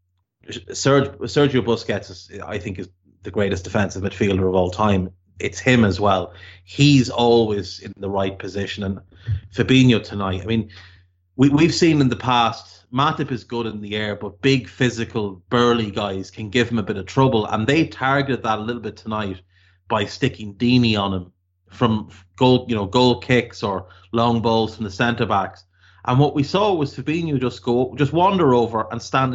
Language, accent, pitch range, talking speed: English, Irish, 100-125 Hz, 180 wpm